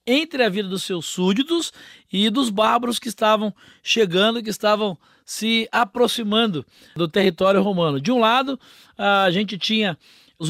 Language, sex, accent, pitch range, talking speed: Portuguese, male, Brazilian, 185-235 Hz, 150 wpm